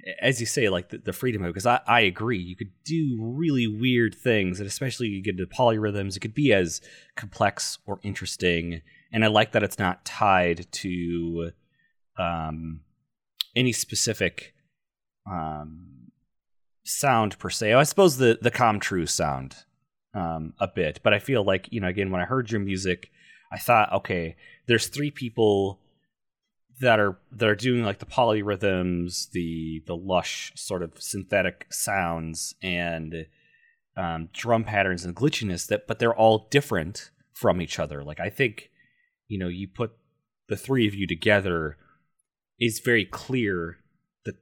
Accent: American